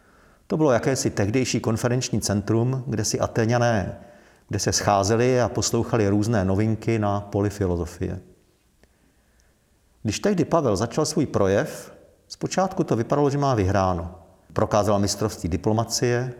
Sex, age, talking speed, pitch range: male, 40-59, 125 wpm, 95-125 Hz